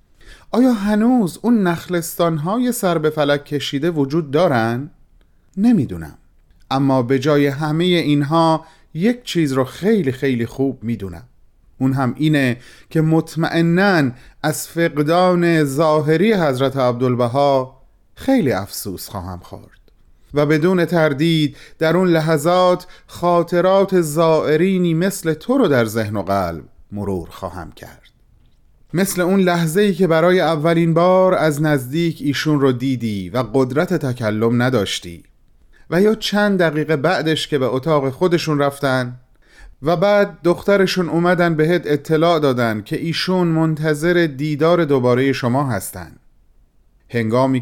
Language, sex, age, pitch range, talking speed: Persian, male, 30-49, 125-175 Hz, 125 wpm